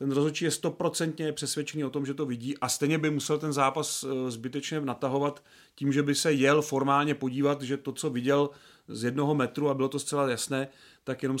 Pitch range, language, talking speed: 130-155 Hz, Czech, 205 wpm